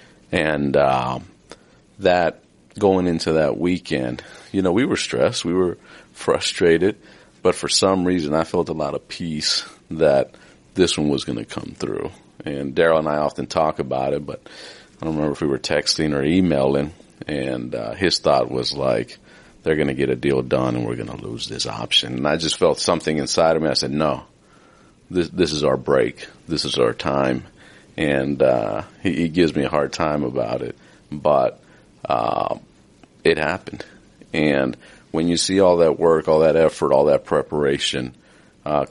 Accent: American